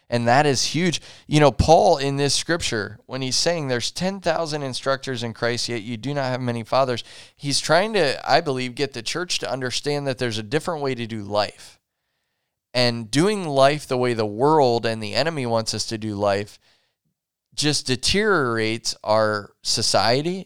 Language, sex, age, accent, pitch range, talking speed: English, male, 20-39, American, 115-145 Hz, 180 wpm